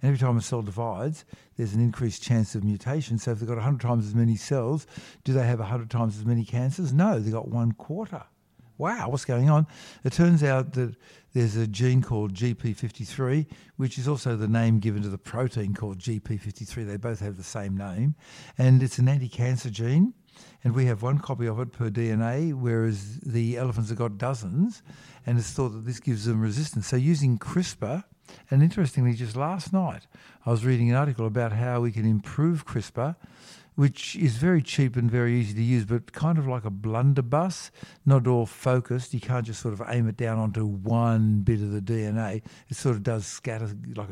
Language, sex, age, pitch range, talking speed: English, male, 60-79, 115-135 Hz, 205 wpm